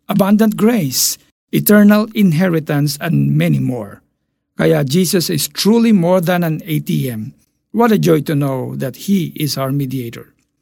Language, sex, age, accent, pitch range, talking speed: Filipino, male, 50-69, native, 140-180 Hz, 140 wpm